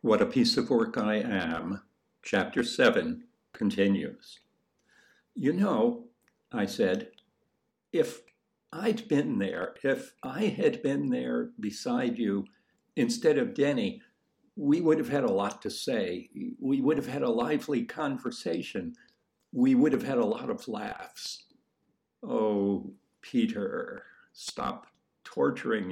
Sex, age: male, 60-79